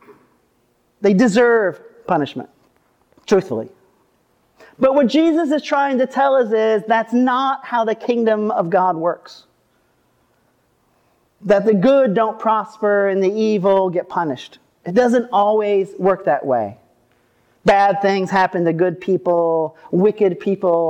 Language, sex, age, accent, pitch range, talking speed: English, male, 40-59, American, 155-220 Hz, 130 wpm